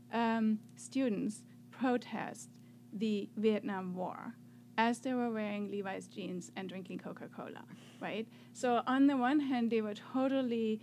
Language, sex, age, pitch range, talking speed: English, female, 30-49, 200-240 Hz, 135 wpm